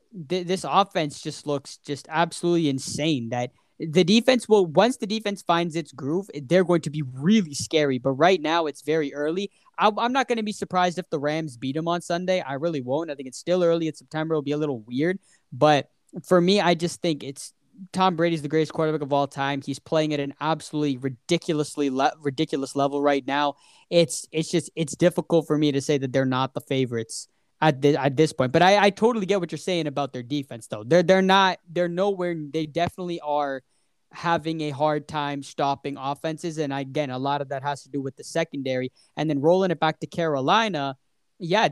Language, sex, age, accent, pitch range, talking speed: English, male, 10-29, American, 145-185 Hz, 210 wpm